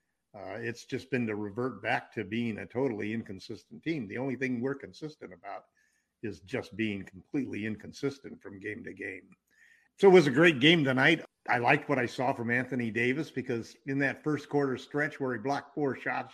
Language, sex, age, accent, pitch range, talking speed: English, male, 50-69, American, 115-140 Hz, 200 wpm